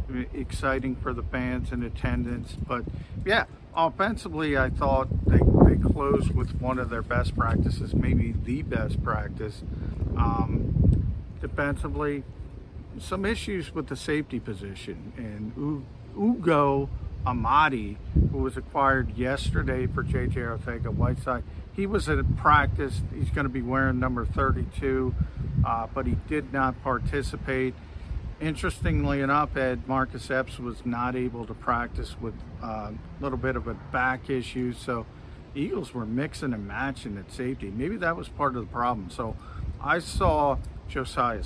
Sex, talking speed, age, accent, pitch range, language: male, 140 wpm, 50-69, American, 110-135 Hz, English